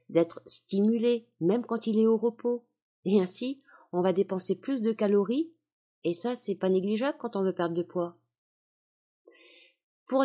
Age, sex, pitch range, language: 50-69, female, 160-225 Hz, French